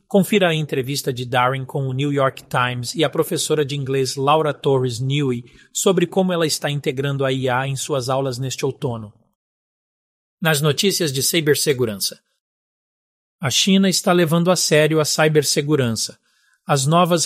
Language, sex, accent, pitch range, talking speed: Portuguese, male, Brazilian, 130-165 Hz, 155 wpm